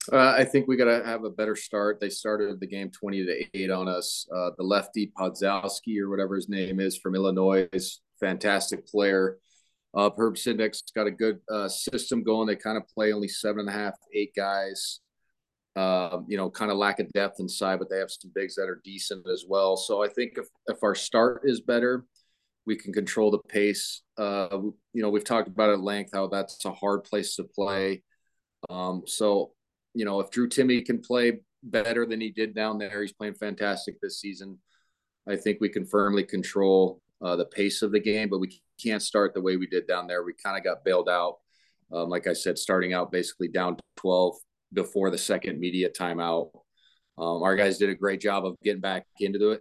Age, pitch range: 30-49, 95-105 Hz